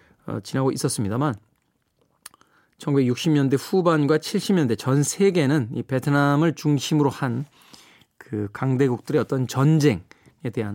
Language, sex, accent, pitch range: Korean, male, native, 125-175 Hz